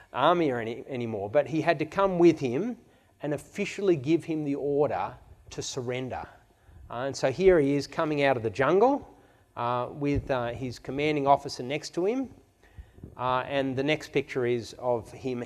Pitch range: 115-180 Hz